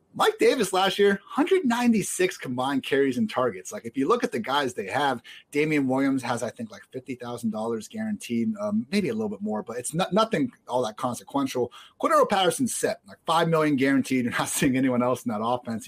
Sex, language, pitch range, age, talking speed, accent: male, English, 130-205 Hz, 30-49, 210 wpm, American